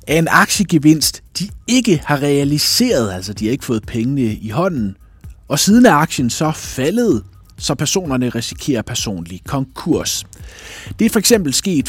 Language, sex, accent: Danish, male, native